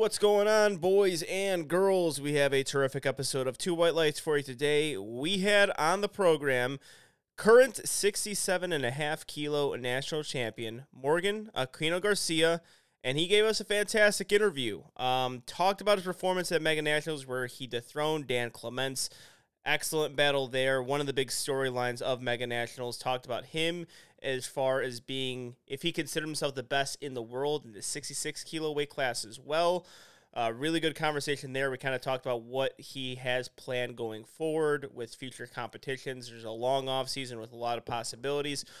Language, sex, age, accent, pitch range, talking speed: English, male, 30-49, American, 125-160 Hz, 175 wpm